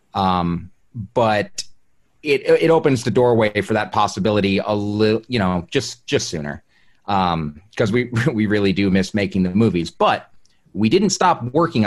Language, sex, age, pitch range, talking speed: English, male, 30-49, 100-125 Hz, 160 wpm